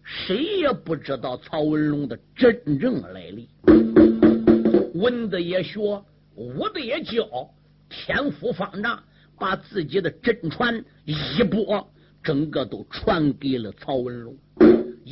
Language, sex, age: Chinese, male, 50-69